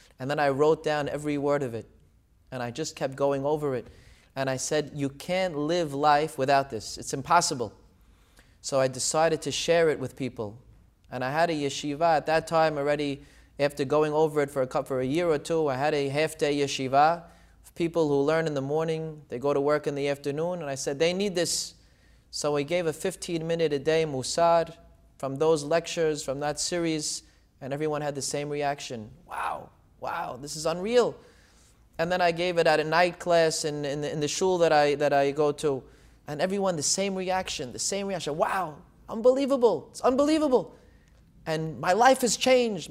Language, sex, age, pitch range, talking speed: English, male, 30-49, 145-185 Hz, 200 wpm